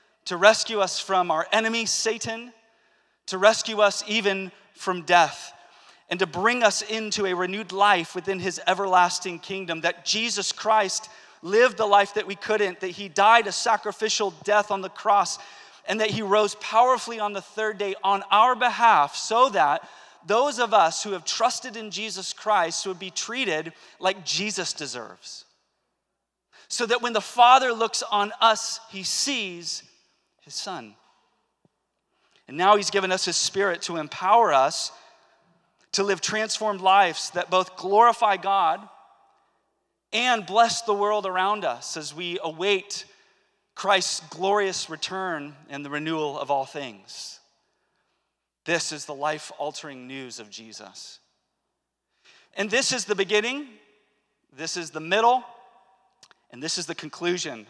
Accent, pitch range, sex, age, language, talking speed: American, 175-215 Hz, male, 30-49, English, 145 wpm